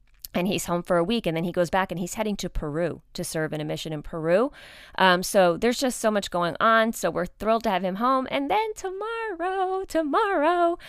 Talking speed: 230 wpm